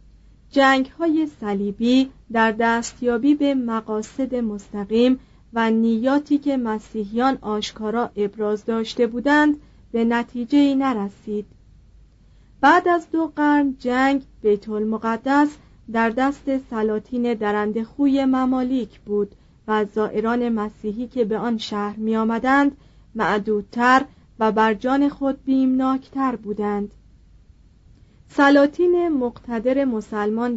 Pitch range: 215-270 Hz